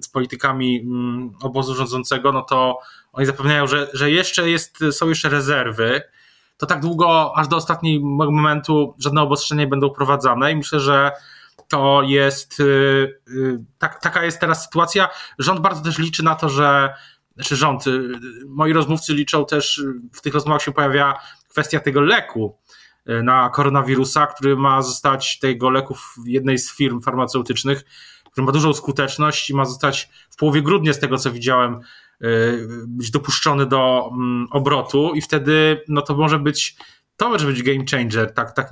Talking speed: 155 wpm